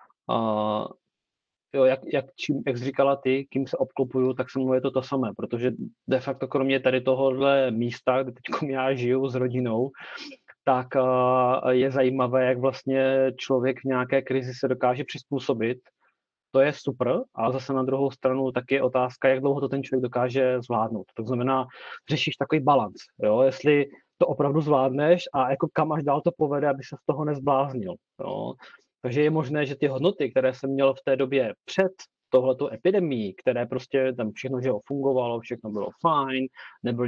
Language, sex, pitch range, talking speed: Czech, male, 130-140 Hz, 175 wpm